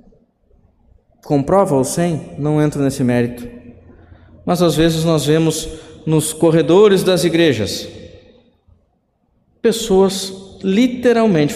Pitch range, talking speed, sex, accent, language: 130-175 Hz, 95 wpm, male, Brazilian, Portuguese